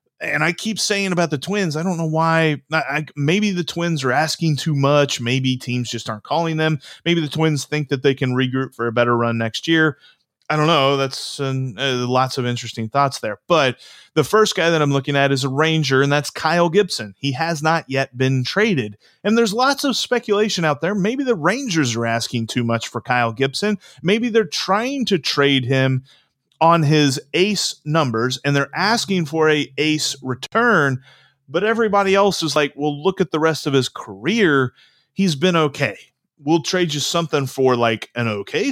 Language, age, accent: English, 30-49, American